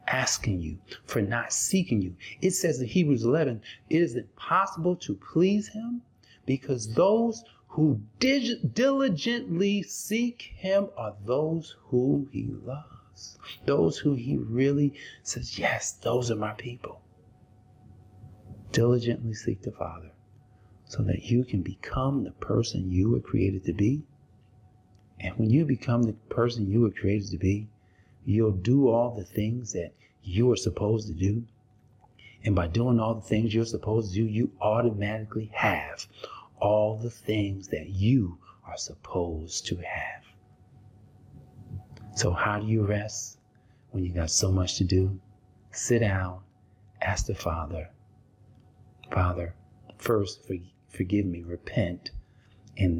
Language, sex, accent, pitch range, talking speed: English, male, American, 95-125 Hz, 135 wpm